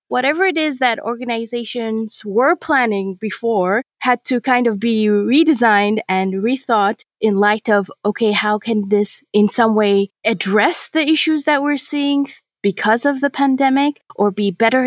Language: English